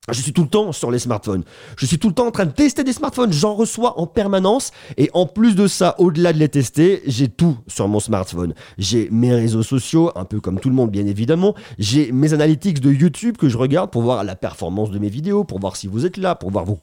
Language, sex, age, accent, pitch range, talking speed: French, male, 30-49, French, 125-190 Hz, 260 wpm